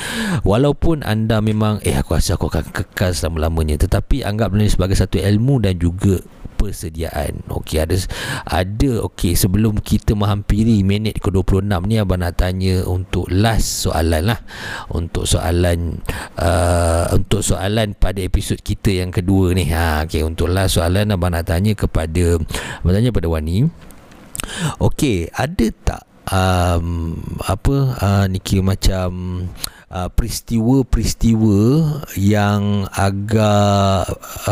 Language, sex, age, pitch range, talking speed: Malay, male, 50-69, 90-110 Hz, 125 wpm